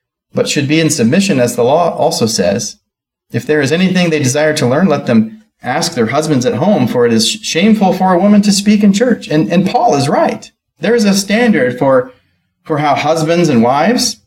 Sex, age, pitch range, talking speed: male, 30-49, 155-225 Hz, 215 wpm